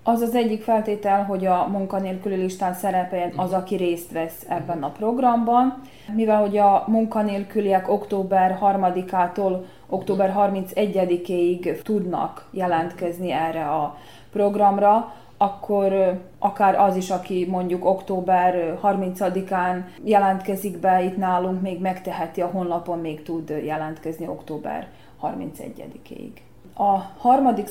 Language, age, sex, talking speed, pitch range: Hungarian, 20-39, female, 115 wpm, 175-205 Hz